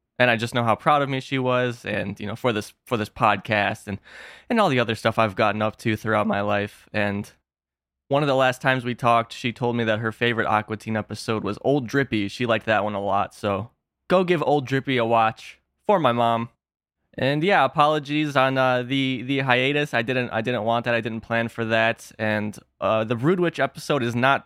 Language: English